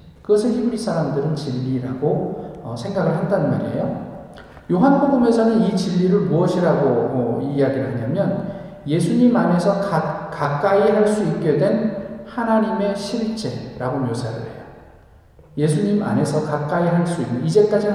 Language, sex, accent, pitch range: Korean, male, native, 155-220 Hz